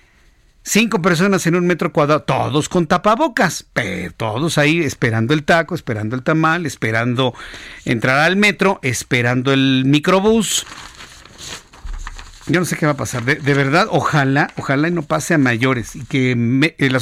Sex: male